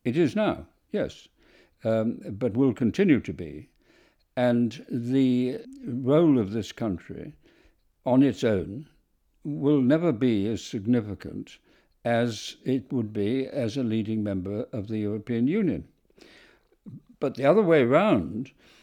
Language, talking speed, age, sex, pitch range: English, 130 wpm, 60-79, male, 110-140 Hz